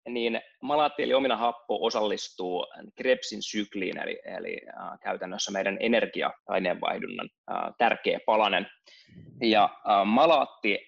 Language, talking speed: Finnish, 105 wpm